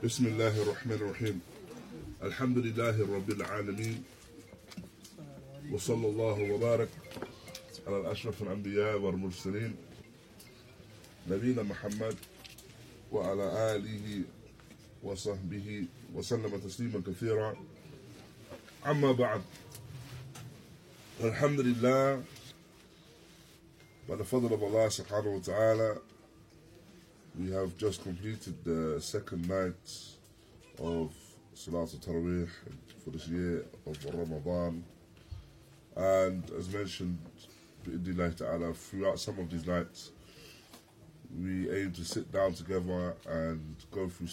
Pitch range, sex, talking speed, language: 85-110 Hz, male, 85 wpm, English